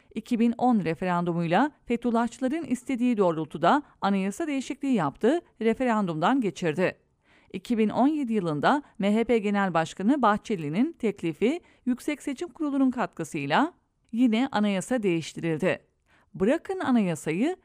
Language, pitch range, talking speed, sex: English, 195-265 Hz, 90 wpm, female